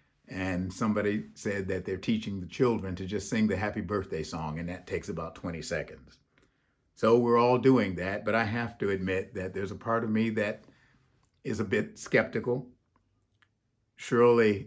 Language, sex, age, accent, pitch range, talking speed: English, male, 50-69, American, 100-120 Hz, 175 wpm